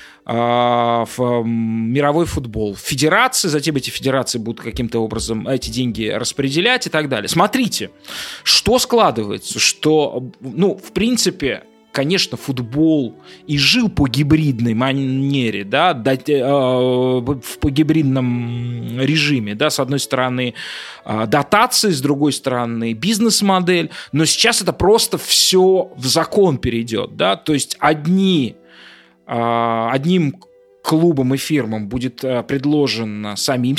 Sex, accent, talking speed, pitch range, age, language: male, native, 110 wpm, 125-195 Hz, 20-39, Russian